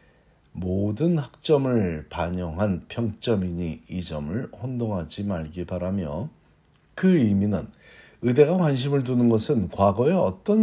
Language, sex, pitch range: Korean, male, 95-130 Hz